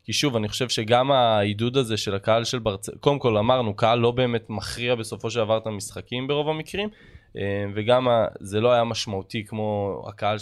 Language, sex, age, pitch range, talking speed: Hebrew, male, 20-39, 110-135 Hz, 185 wpm